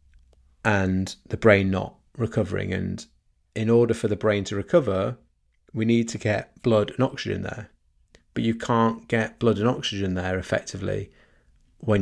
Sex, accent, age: male, British, 30-49